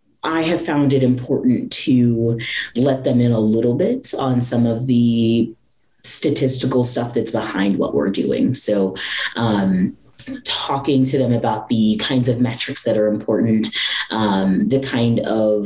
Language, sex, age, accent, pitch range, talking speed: English, female, 30-49, American, 110-135 Hz, 155 wpm